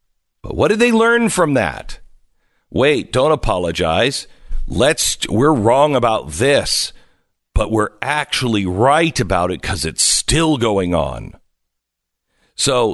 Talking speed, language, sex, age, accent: 125 wpm, English, male, 50-69, American